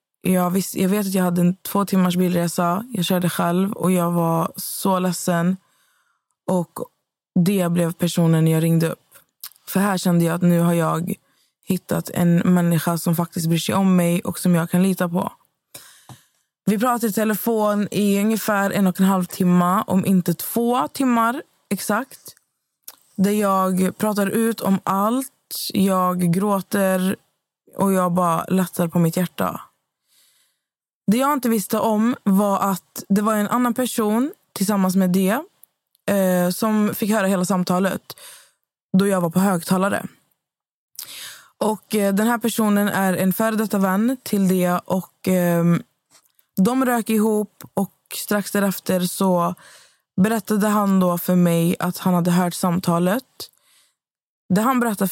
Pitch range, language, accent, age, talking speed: 180-215 Hz, Swedish, native, 20-39, 145 wpm